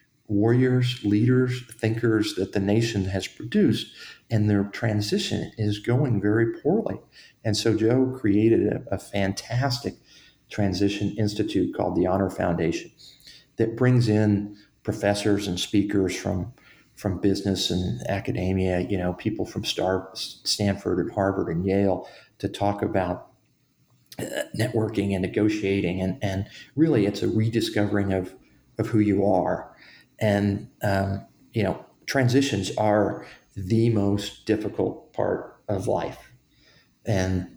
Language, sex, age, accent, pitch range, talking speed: English, male, 40-59, American, 95-110 Hz, 125 wpm